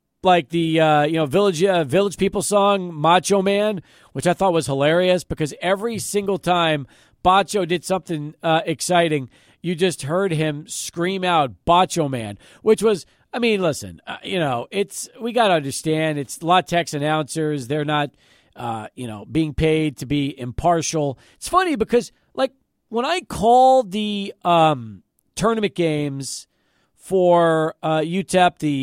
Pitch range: 155-205 Hz